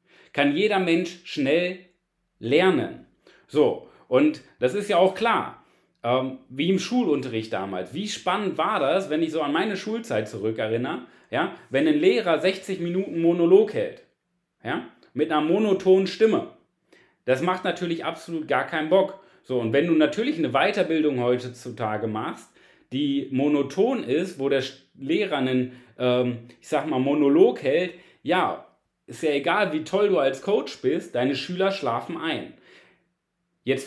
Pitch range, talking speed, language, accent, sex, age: 130-185 Hz, 145 wpm, German, German, male, 30-49